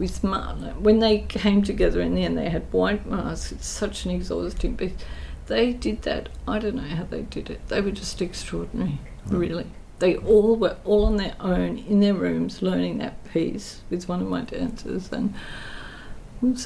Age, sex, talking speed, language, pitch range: 50-69, female, 185 wpm, English, 175-225 Hz